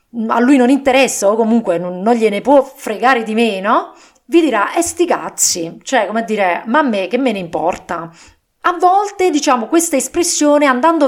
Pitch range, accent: 195-285 Hz, Italian